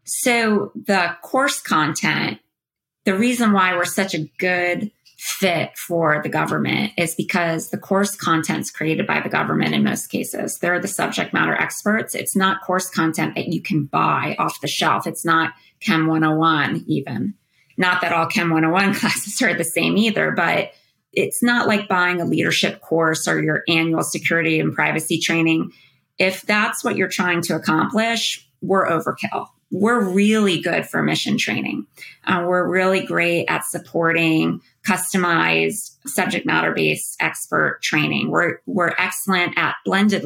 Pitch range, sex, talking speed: 165-200 Hz, female, 155 wpm